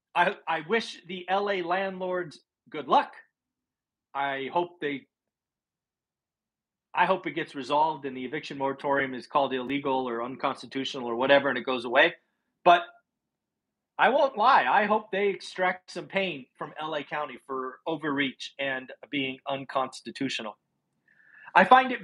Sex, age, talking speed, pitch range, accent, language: male, 40-59, 140 wpm, 140-190 Hz, American, English